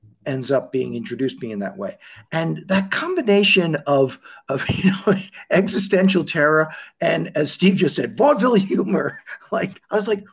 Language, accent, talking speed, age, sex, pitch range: English, American, 170 wpm, 50-69, male, 125-190 Hz